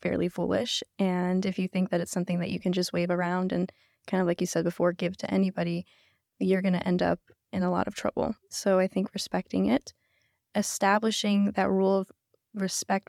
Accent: American